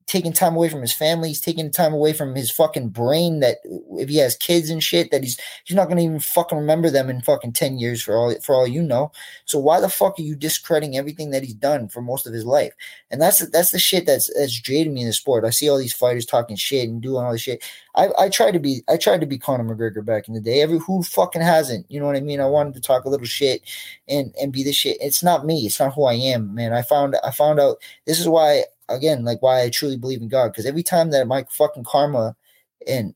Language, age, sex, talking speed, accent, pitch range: English, 20-39, male, 270 wpm, American, 125-160 Hz